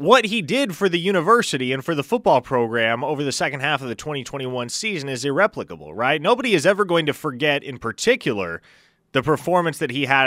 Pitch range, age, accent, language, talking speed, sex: 120-170 Hz, 30-49, American, English, 205 wpm, male